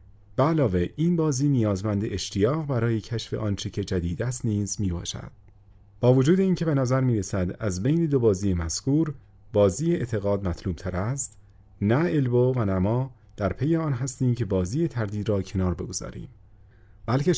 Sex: male